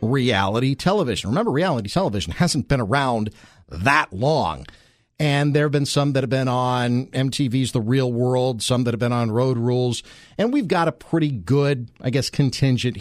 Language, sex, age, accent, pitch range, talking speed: English, male, 50-69, American, 115-140 Hz, 180 wpm